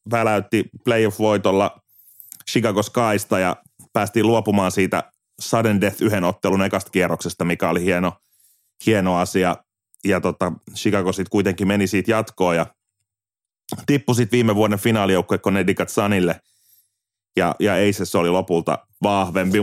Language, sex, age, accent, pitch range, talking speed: Finnish, male, 30-49, native, 95-115 Hz, 130 wpm